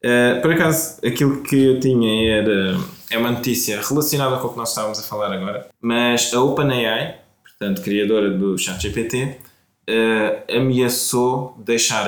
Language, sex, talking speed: Portuguese, male, 150 wpm